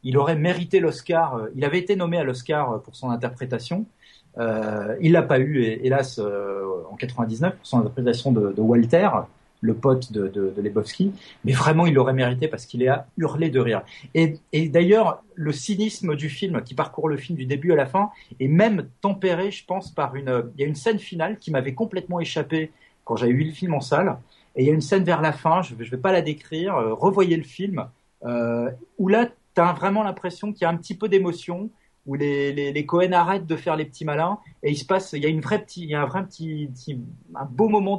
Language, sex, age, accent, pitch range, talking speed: French, male, 40-59, French, 130-180 Hz, 240 wpm